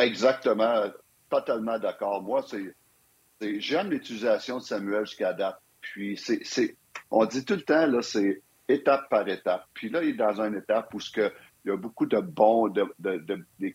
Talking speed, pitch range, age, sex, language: 200 wpm, 105-145 Hz, 50-69, male, French